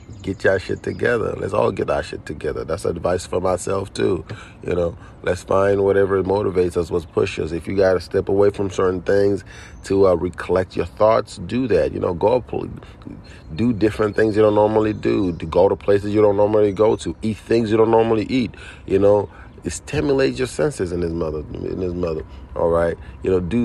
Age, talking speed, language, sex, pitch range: 30-49, 205 wpm, English, male, 90-105 Hz